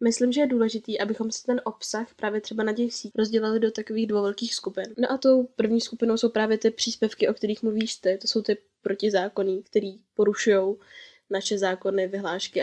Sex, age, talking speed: female, 10-29, 190 wpm